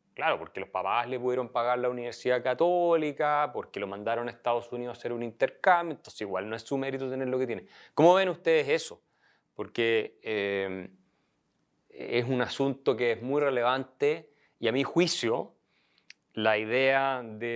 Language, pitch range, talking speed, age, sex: Spanish, 110-135 Hz, 170 wpm, 30-49, male